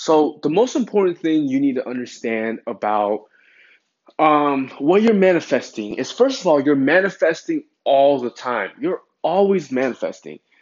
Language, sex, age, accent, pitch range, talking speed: English, male, 20-39, American, 120-170 Hz, 145 wpm